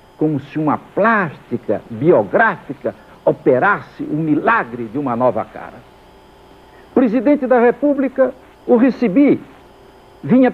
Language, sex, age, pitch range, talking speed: Portuguese, male, 60-79, 170-255 Hz, 100 wpm